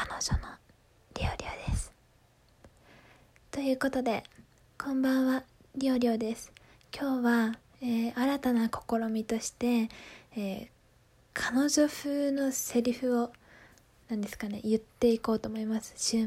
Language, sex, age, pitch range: Japanese, female, 20-39, 205-250 Hz